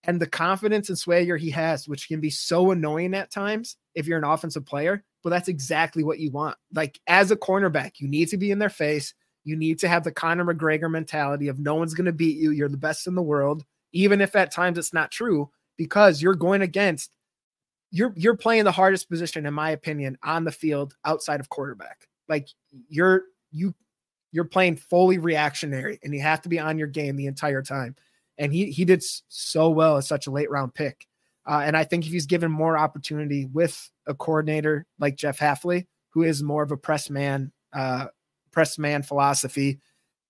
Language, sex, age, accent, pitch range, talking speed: English, male, 20-39, American, 140-170 Hz, 205 wpm